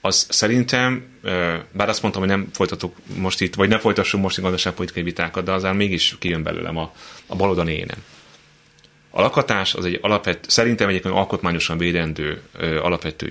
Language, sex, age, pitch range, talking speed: Hungarian, male, 30-49, 85-110 Hz, 160 wpm